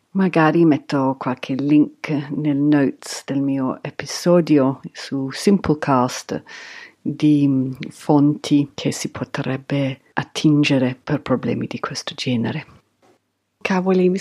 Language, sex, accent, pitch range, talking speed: Italian, female, native, 145-205 Hz, 100 wpm